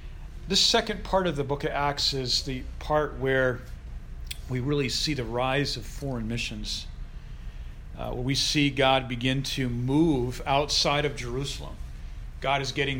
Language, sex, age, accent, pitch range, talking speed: English, male, 40-59, American, 120-145 Hz, 155 wpm